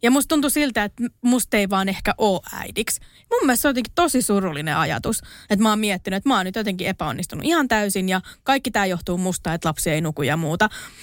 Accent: native